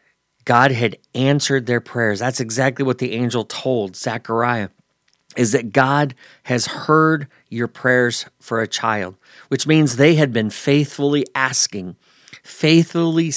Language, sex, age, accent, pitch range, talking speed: English, male, 40-59, American, 110-135 Hz, 135 wpm